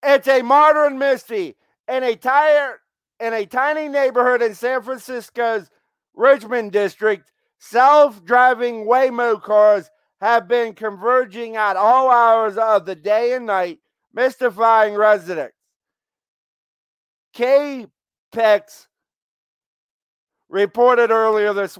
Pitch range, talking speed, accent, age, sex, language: 205-270 Hz, 95 wpm, American, 50-69, male, English